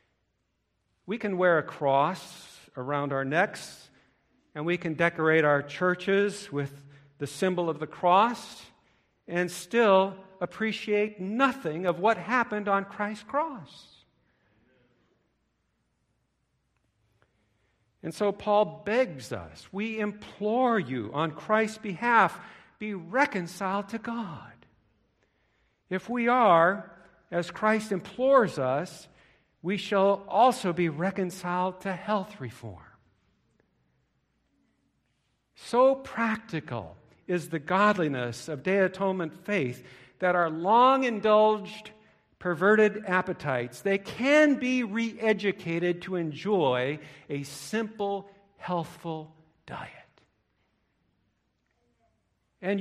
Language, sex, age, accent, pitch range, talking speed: English, male, 50-69, American, 145-210 Hz, 95 wpm